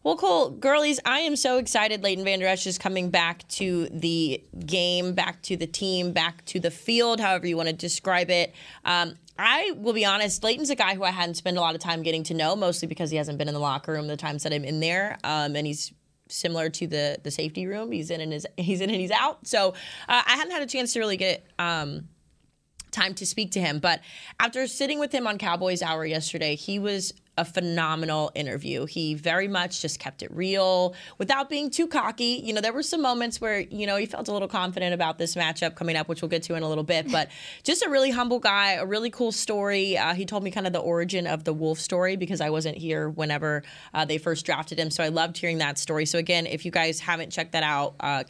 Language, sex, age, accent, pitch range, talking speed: English, female, 20-39, American, 160-200 Hz, 245 wpm